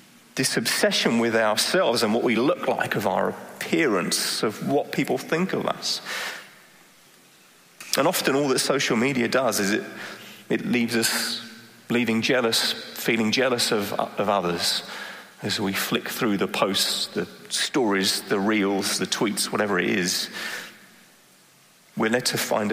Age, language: 30-49, English